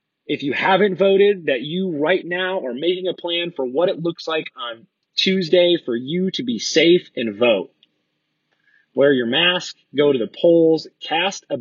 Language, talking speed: English, 180 wpm